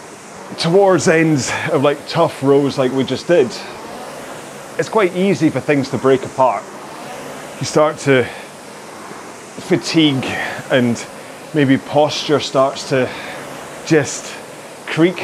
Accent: British